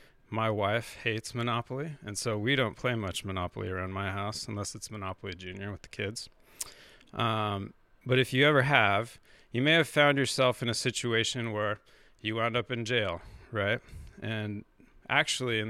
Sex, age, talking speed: male, 30-49, 170 wpm